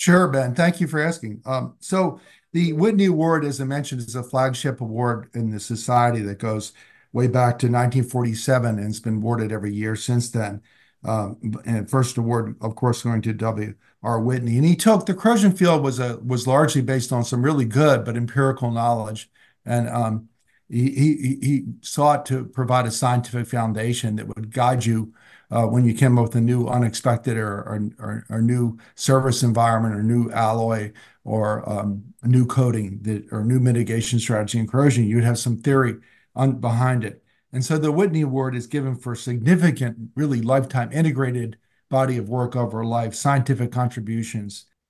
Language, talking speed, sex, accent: English, 180 wpm, male, American